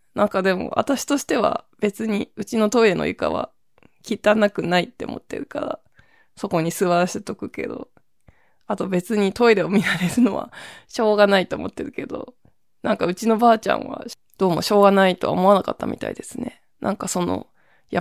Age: 20-39